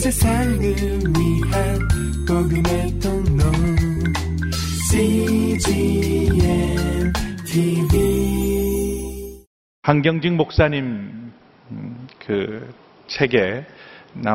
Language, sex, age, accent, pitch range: Korean, male, 40-59, native, 100-130 Hz